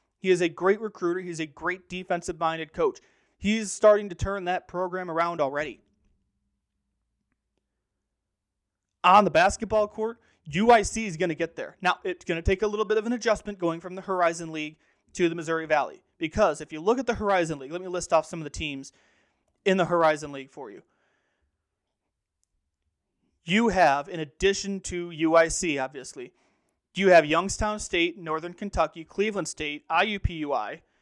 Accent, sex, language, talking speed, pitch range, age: American, male, English, 165 wpm, 150-195 Hz, 30-49